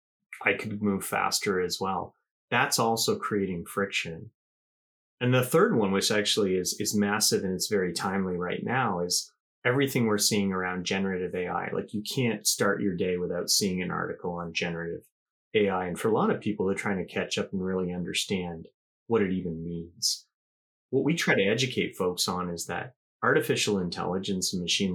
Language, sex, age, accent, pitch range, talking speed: English, male, 30-49, American, 90-115 Hz, 185 wpm